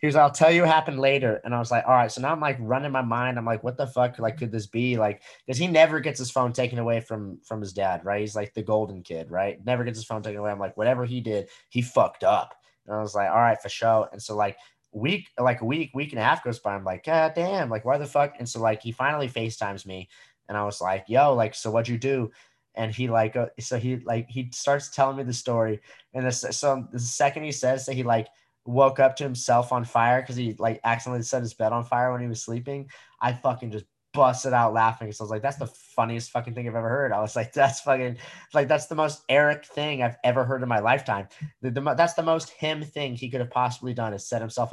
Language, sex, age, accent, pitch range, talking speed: English, male, 20-39, American, 115-135 Hz, 270 wpm